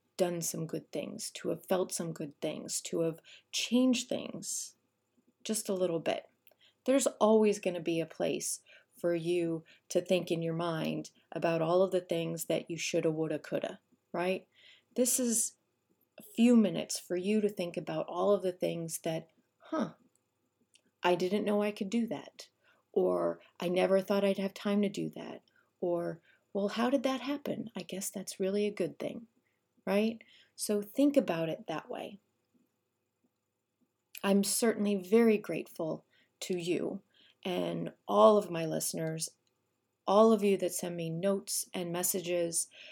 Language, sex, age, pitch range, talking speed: English, female, 30-49, 165-195 Hz, 160 wpm